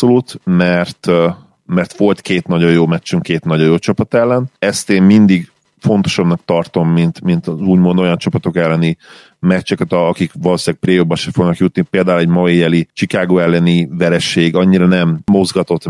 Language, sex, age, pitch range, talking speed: Hungarian, male, 40-59, 80-95 Hz, 165 wpm